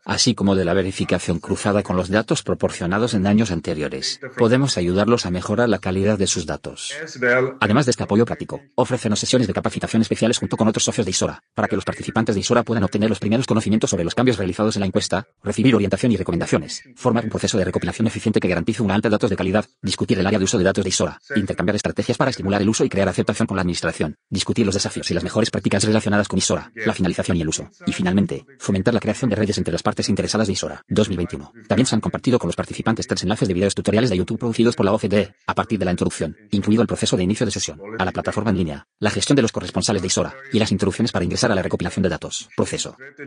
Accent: Spanish